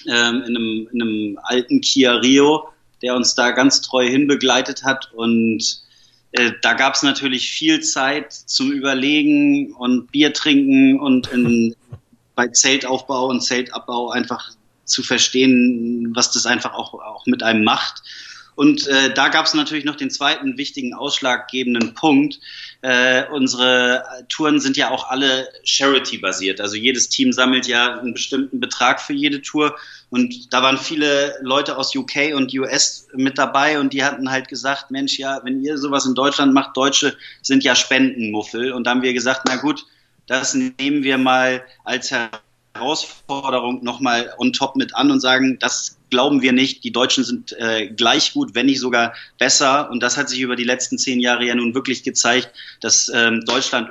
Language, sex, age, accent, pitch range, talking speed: German, male, 30-49, German, 120-140 Hz, 170 wpm